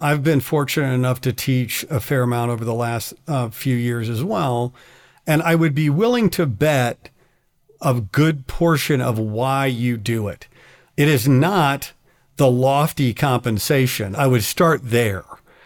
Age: 50-69